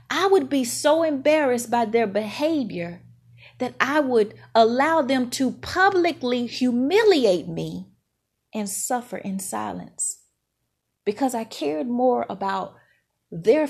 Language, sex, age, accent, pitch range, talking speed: English, female, 40-59, American, 195-305 Hz, 120 wpm